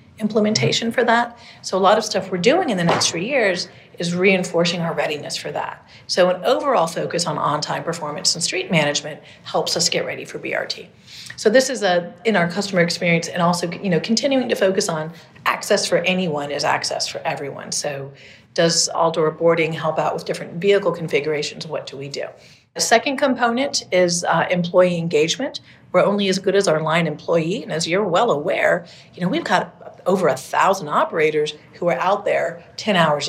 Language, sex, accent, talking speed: English, female, American, 195 wpm